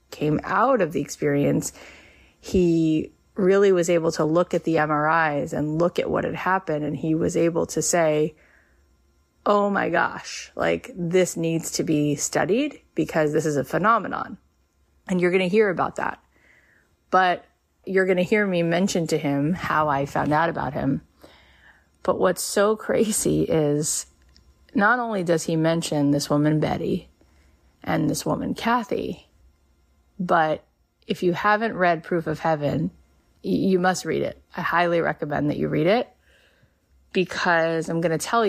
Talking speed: 160 wpm